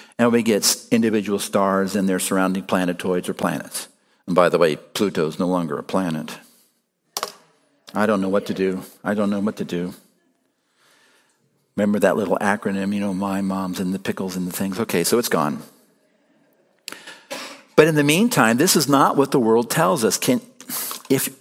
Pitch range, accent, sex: 110-165 Hz, American, male